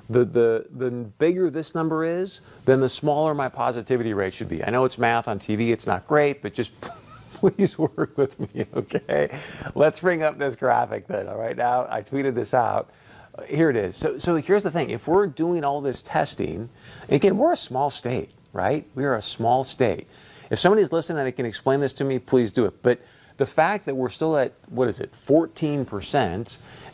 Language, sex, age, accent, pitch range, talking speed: English, male, 50-69, American, 115-150 Hz, 205 wpm